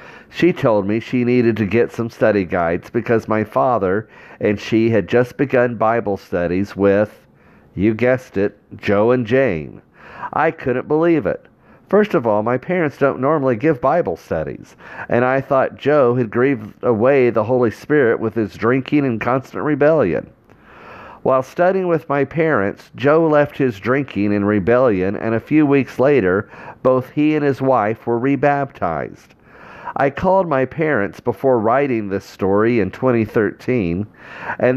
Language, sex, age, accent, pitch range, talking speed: English, male, 50-69, American, 105-140 Hz, 155 wpm